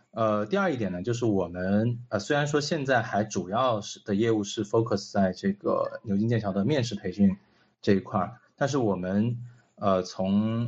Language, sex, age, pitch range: Chinese, male, 20-39, 100-115 Hz